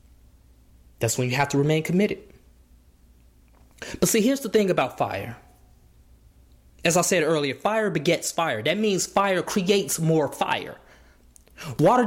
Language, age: English, 20-39